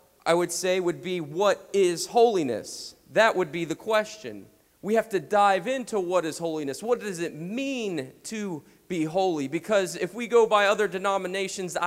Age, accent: 30-49, American